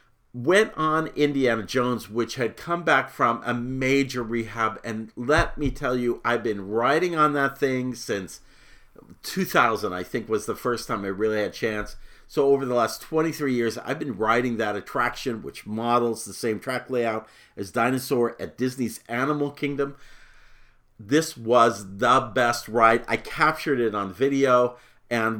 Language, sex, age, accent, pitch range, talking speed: English, male, 50-69, American, 110-135 Hz, 165 wpm